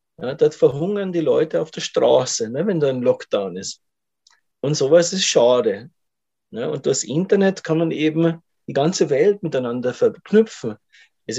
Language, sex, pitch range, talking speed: German, male, 150-230 Hz, 165 wpm